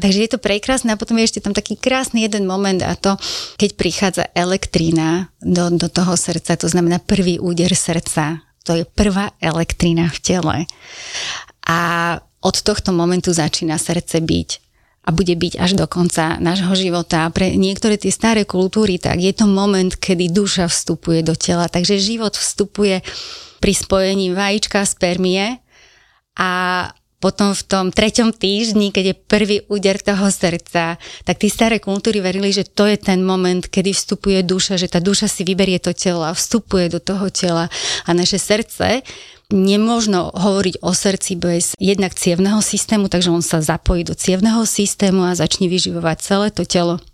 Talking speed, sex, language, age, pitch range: 165 wpm, female, Slovak, 30-49, 175-200 Hz